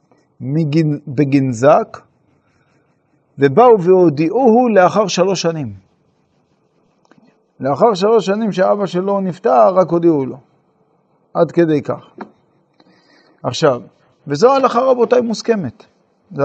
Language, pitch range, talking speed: Hebrew, 145-195 Hz, 90 wpm